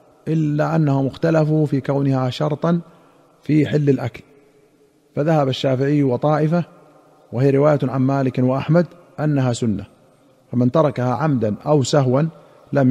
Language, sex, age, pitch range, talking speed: Arabic, male, 40-59, 130-155 Hz, 115 wpm